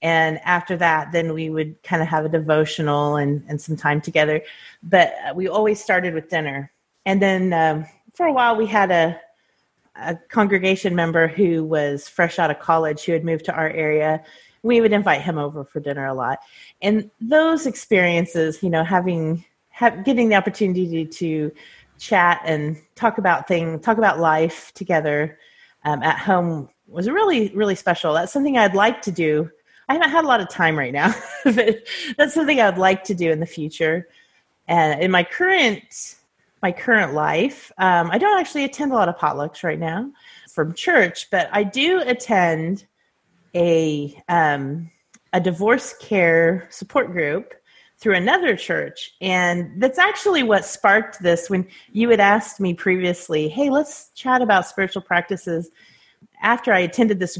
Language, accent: English, American